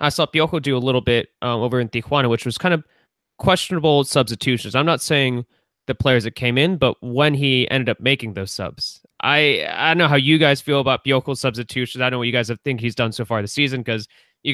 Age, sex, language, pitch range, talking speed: 20-39, male, English, 125-160 Hz, 250 wpm